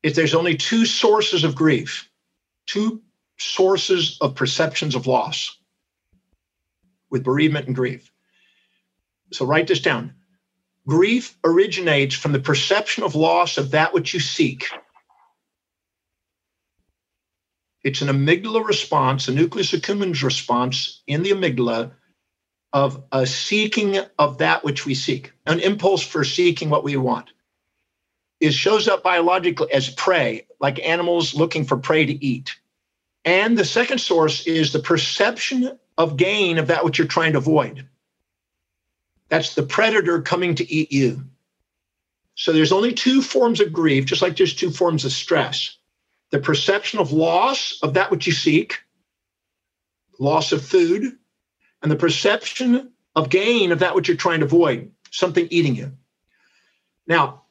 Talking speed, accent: 145 wpm, American